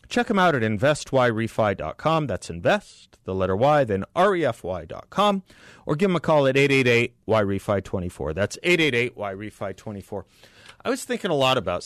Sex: male